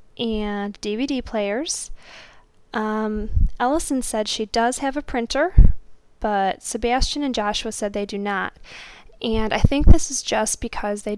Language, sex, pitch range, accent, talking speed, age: English, female, 215-240 Hz, American, 145 wpm, 10-29